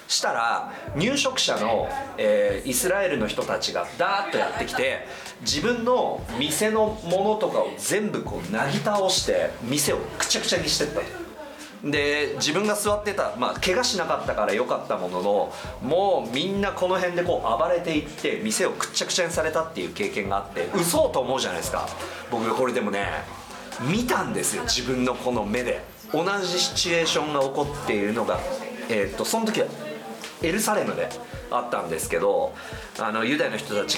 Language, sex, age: Japanese, male, 40-59